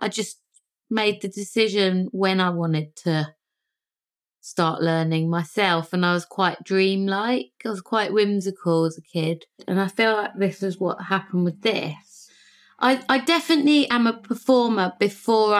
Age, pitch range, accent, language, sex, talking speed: 20-39, 185-225 Hz, British, English, female, 160 wpm